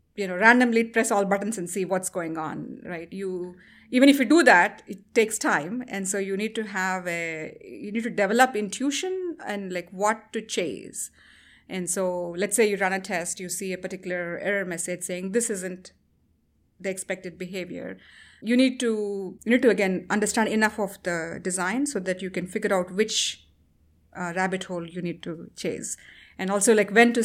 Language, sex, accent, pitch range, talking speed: English, female, Indian, 185-225 Hz, 195 wpm